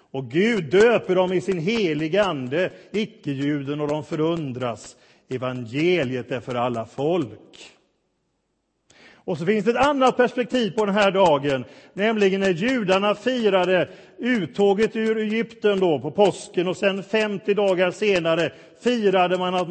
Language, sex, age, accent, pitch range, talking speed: Swedish, male, 40-59, native, 150-205 Hz, 140 wpm